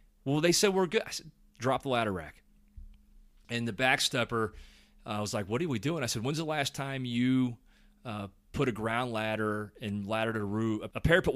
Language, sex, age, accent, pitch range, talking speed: English, male, 30-49, American, 100-125 Hz, 205 wpm